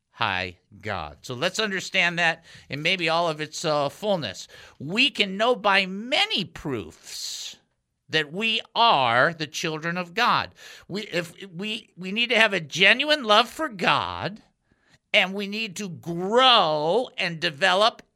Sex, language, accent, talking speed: male, English, American, 150 wpm